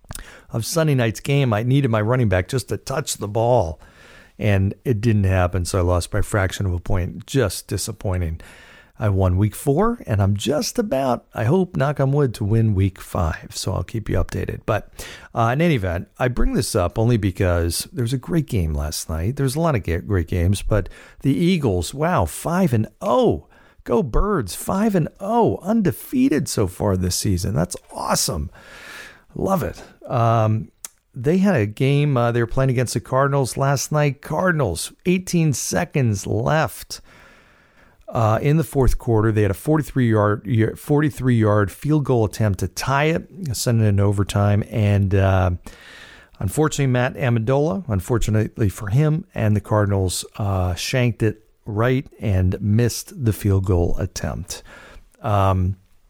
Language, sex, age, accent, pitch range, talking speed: English, male, 50-69, American, 100-135 Hz, 165 wpm